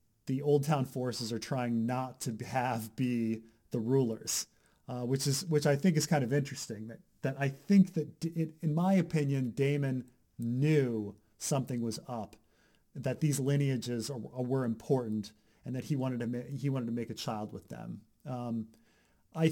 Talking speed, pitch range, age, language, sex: 180 wpm, 110-140 Hz, 30-49, English, male